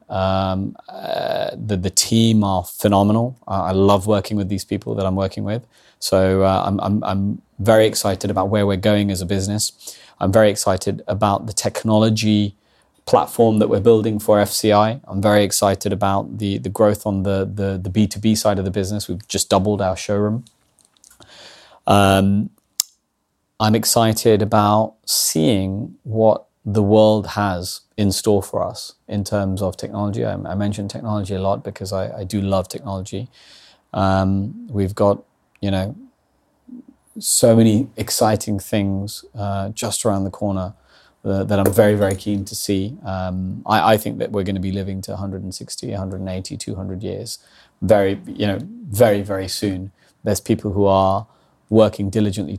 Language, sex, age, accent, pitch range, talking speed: English, male, 20-39, British, 95-110 Hz, 165 wpm